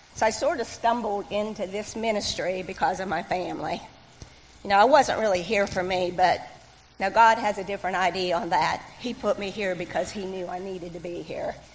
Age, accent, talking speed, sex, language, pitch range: 50-69, American, 210 wpm, female, English, 190-240 Hz